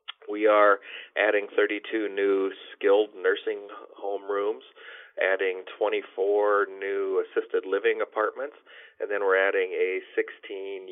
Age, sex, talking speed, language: 40-59, male, 115 wpm, English